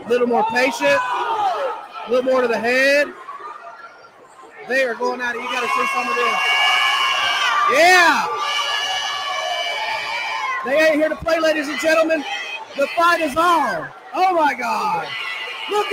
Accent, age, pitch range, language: American, 40-59, 265-385 Hz, English